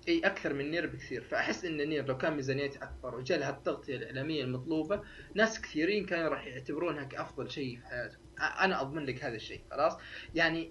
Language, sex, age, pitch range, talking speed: Arabic, male, 20-39, 130-180 Hz, 180 wpm